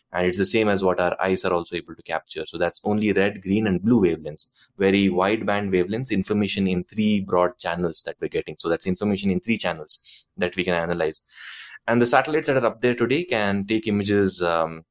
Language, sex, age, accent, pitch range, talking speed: English, male, 20-39, Indian, 90-110 Hz, 215 wpm